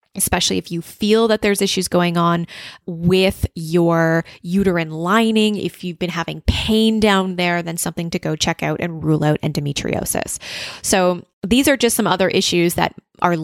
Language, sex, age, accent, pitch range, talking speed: English, female, 20-39, American, 165-210 Hz, 175 wpm